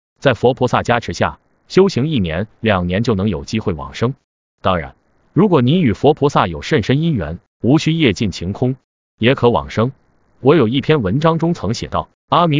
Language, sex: Chinese, male